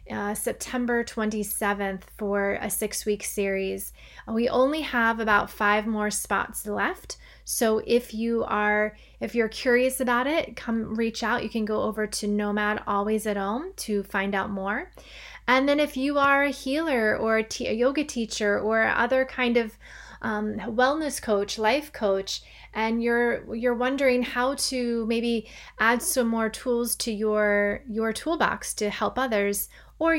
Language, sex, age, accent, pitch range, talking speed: English, female, 30-49, American, 210-245 Hz, 165 wpm